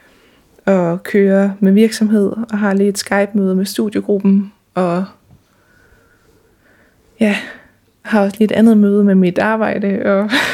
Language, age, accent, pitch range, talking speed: Danish, 20-39, native, 185-205 Hz, 130 wpm